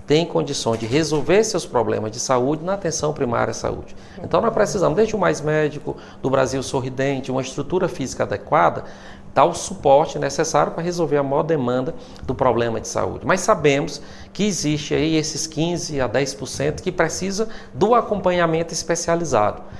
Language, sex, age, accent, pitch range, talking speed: Portuguese, male, 40-59, Brazilian, 120-155 Hz, 165 wpm